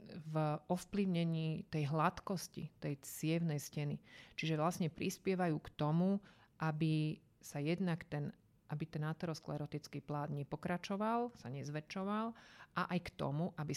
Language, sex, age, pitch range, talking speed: Slovak, female, 40-59, 145-170 Hz, 115 wpm